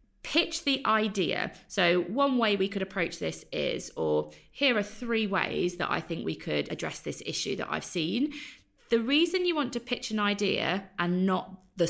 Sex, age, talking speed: female, 20-39, 190 wpm